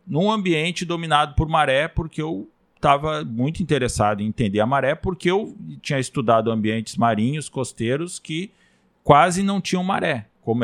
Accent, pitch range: Brazilian, 110-165 Hz